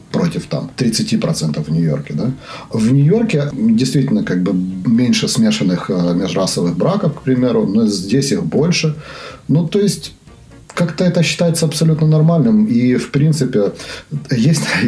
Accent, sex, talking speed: native, male, 135 wpm